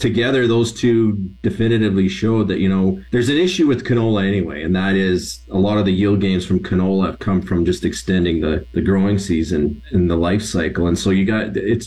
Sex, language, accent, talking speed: male, English, American, 215 wpm